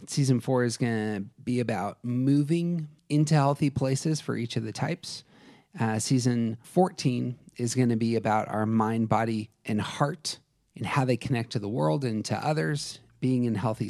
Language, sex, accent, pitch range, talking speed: English, male, American, 115-145 Hz, 180 wpm